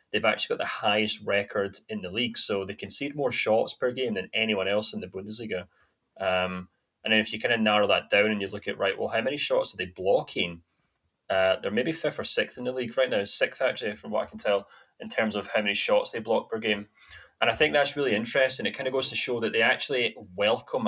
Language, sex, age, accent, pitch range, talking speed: English, male, 30-49, British, 95-110 Hz, 255 wpm